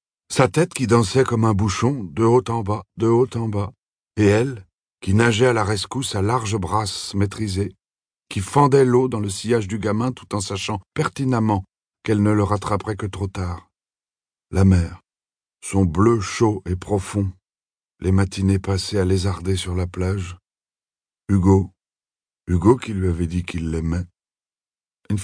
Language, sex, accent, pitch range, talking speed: French, male, French, 95-115 Hz, 165 wpm